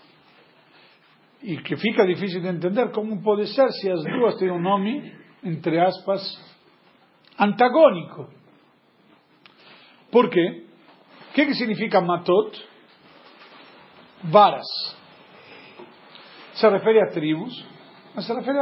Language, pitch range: Portuguese, 180-235 Hz